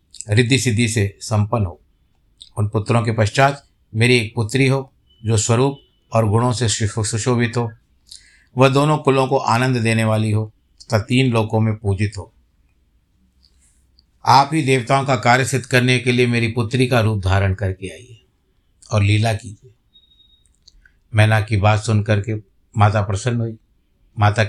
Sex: male